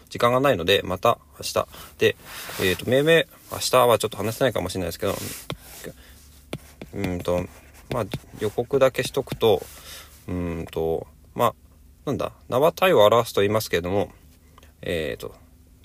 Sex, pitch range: male, 80-110 Hz